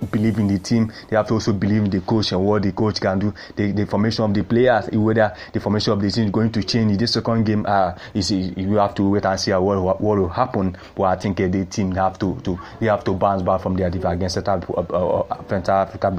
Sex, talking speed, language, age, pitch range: male, 275 wpm, English, 30-49, 95-105 Hz